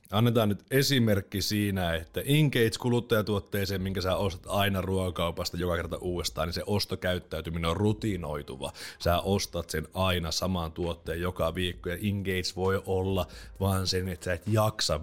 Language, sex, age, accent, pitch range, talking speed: Finnish, male, 30-49, native, 85-110 Hz, 150 wpm